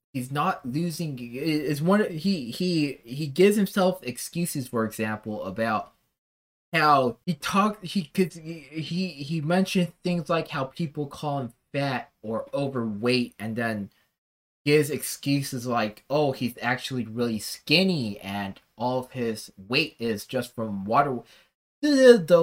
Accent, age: American, 20-39